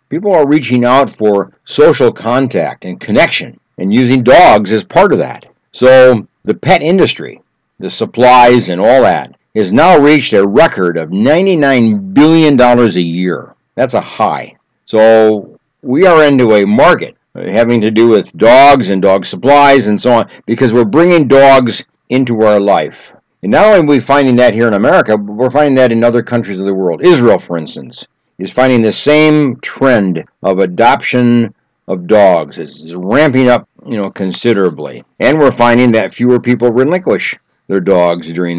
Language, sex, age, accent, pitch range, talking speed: English, male, 60-79, American, 100-140 Hz, 170 wpm